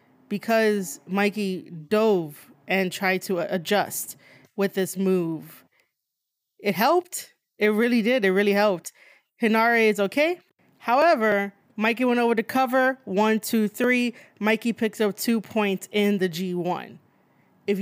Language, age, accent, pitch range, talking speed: English, 20-39, American, 190-225 Hz, 130 wpm